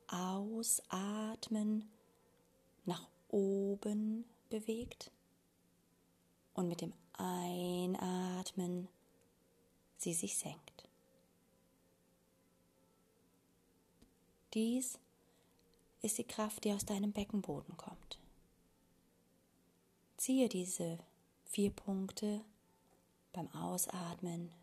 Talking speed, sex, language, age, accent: 65 wpm, female, German, 30-49, German